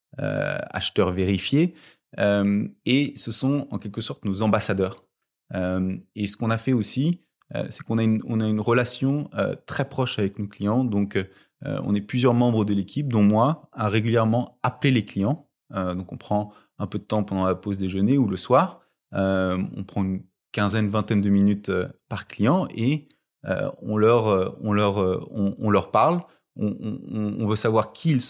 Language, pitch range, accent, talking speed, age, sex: French, 95-120 Hz, French, 180 wpm, 20-39, male